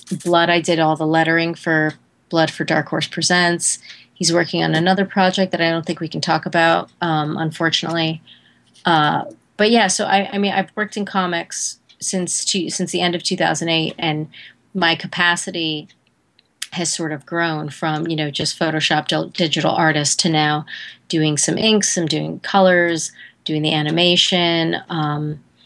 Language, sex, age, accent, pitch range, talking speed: English, female, 30-49, American, 155-175 Hz, 170 wpm